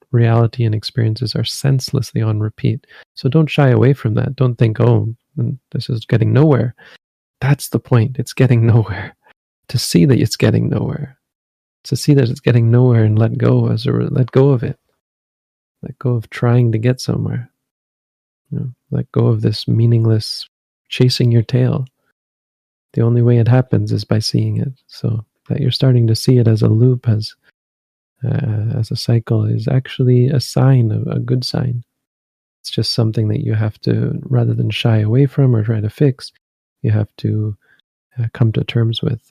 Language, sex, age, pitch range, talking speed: English, male, 40-59, 110-130 Hz, 185 wpm